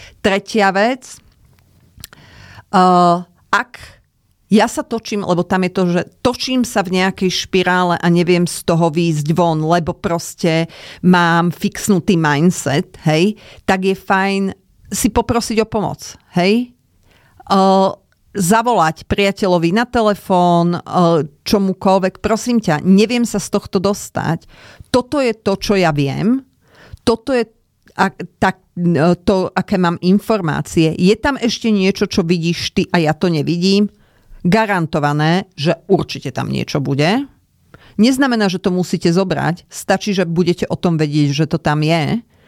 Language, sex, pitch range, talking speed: Slovak, female, 160-205 Hz, 130 wpm